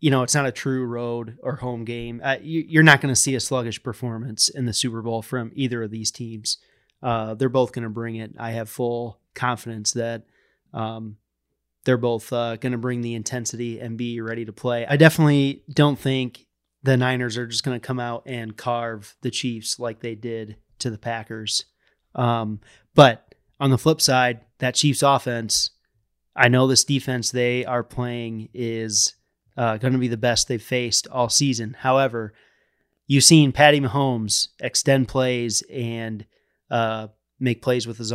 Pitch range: 115-130 Hz